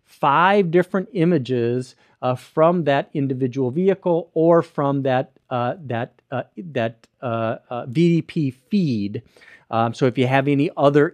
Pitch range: 125-160 Hz